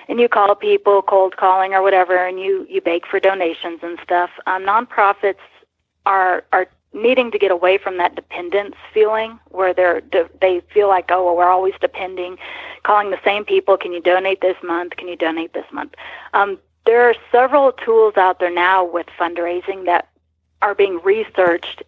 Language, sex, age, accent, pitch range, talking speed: English, female, 40-59, American, 180-215 Hz, 185 wpm